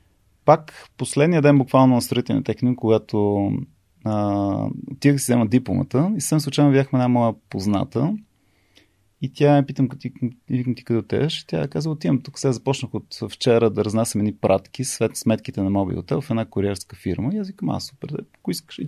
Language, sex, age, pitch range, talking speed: Bulgarian, male, 30-49, 105-140 Hz, 185 wpm